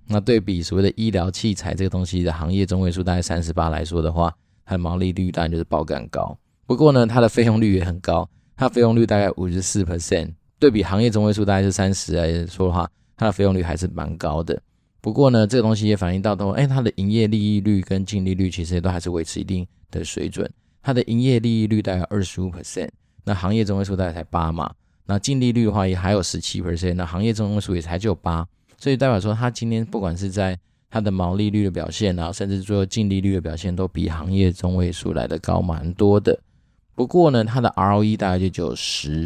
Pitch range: 85-105 Hz